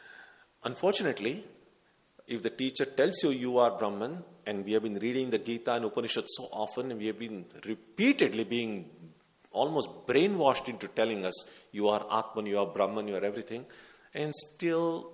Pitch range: 105-165 Hz